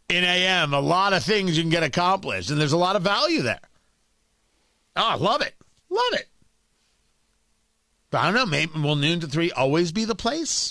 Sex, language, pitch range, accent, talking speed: male, English, 145-215 Hz, American, 200 wpm